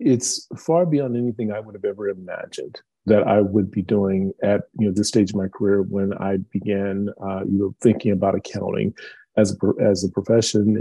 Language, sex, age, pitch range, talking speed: English, male, 40-59, 100-115 Hz, 200 wpm